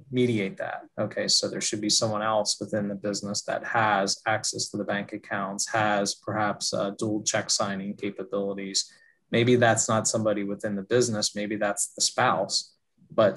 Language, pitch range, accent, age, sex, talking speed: English, 100-115 Hz, American, 20-39, male, 165 wpm